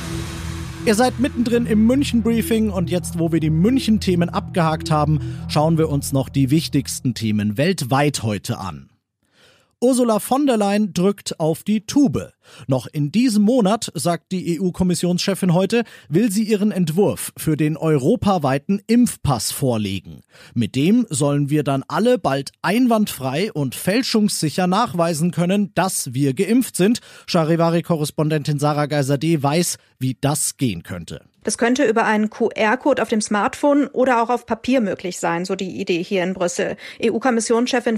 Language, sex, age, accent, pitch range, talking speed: German, male, 40-59, German, 160-235 Hz, 145 wpm